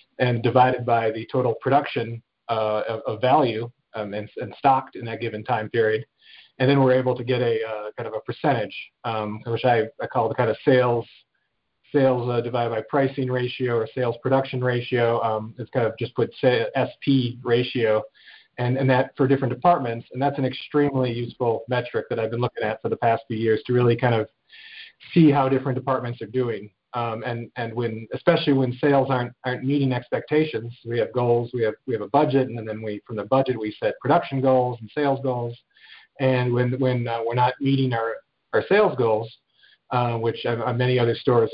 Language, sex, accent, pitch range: English, male, American, 115-135 Hz